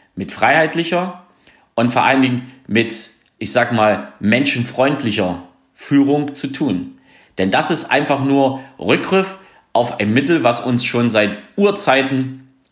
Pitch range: 125-175 Hz